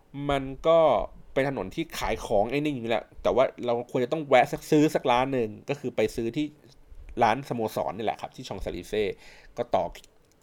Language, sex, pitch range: Thai, male, 105-145 Hz